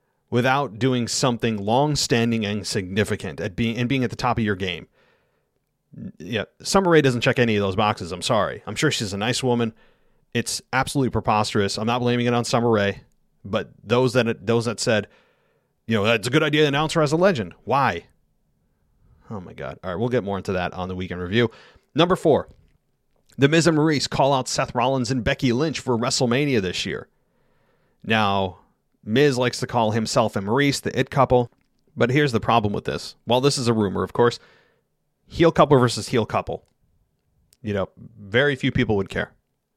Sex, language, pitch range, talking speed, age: male, English, 105-130 Hz, 195 wpm, 40-59